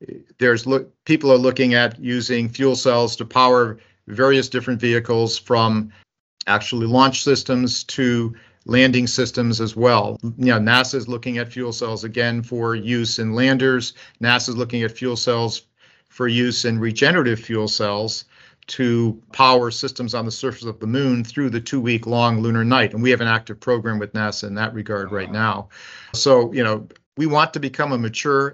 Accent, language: American, English